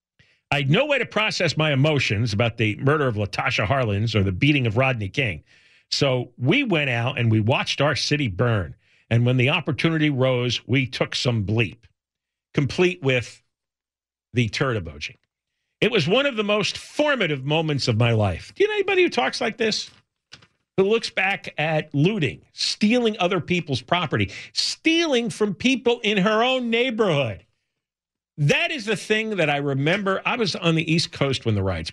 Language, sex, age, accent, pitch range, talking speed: English, male, 50-69, American, 115-185 Hz, 180 wpm